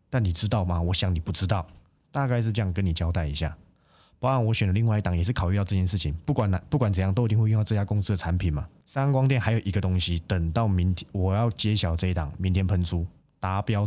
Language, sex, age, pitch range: Chinese, male, 20-39, 90-115 Hz